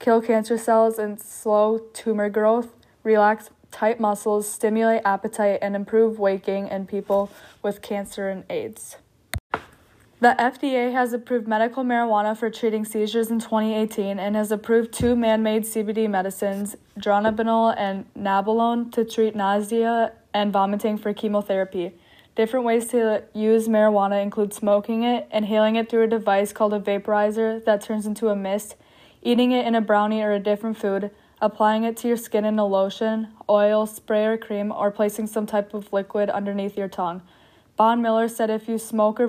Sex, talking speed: female, 165 wpm